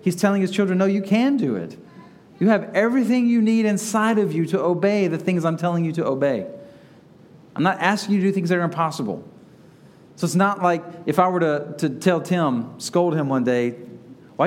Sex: male